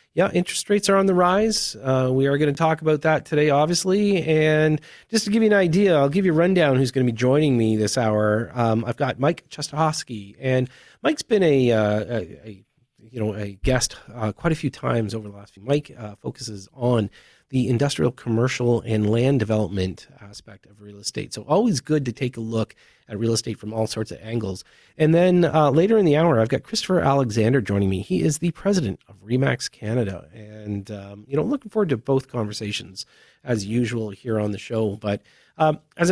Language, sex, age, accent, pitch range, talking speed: English, male, 30-49, American, 110-160 Hz, 215 wpm